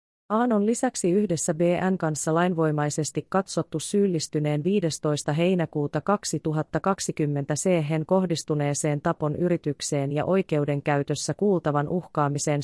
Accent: native